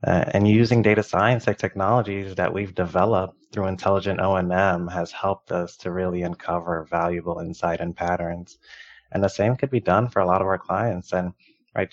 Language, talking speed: English, 190 wpm